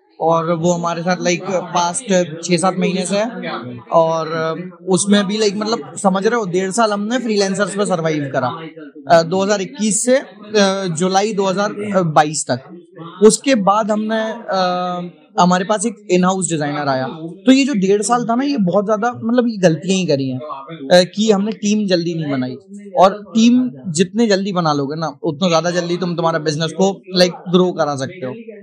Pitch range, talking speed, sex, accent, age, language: 165-200 Hz, 170 wpm, male, native, 20-39, Hindi